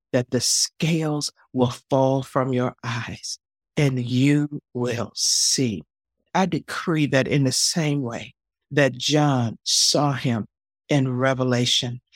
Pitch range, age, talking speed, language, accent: 120-150 Hz, 60-79, 125 wpm, English, American